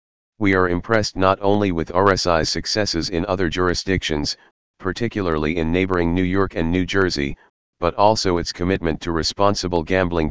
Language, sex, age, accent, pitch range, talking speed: English, male, 40-59, American, 85-95 Hz, 150 wpm